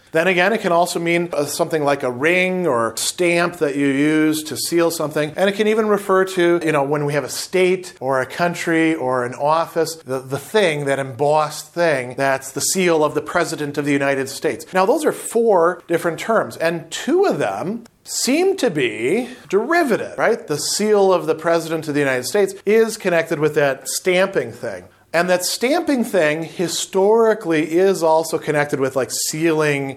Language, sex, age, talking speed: English, male, 40-59, 190 wpm